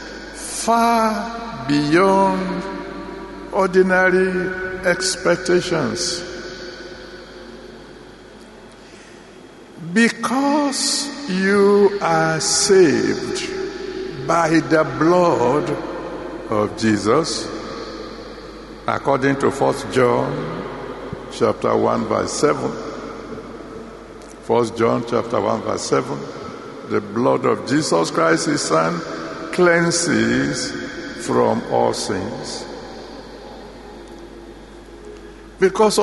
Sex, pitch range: male, 155-225 Hz